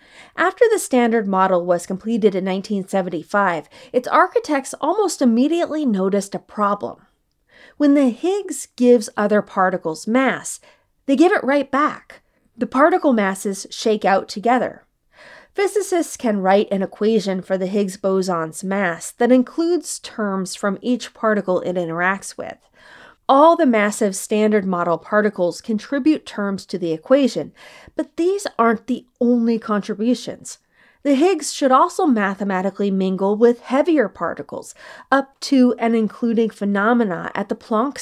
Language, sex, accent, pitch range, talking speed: English, female, American, 195-265 Hz, 135 wpm